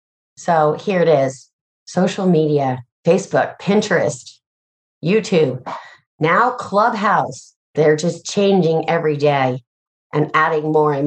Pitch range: 150-195 Hz